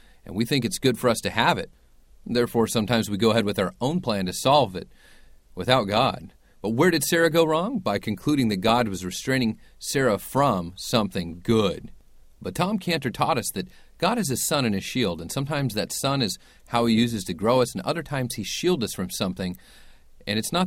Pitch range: 95-135 Hz